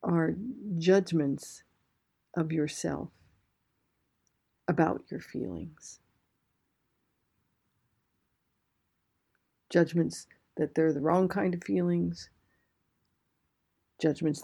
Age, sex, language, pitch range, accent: 60-79, female, Japanese, 155-185 Hz, American